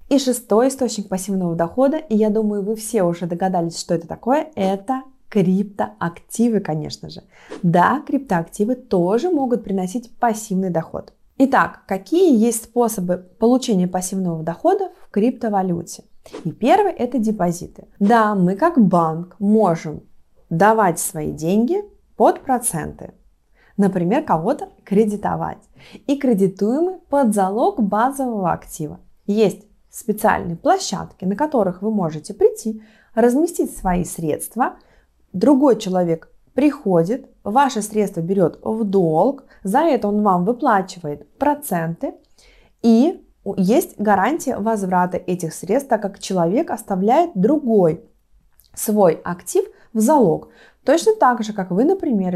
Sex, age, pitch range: female, 20-39, 185-250 Hz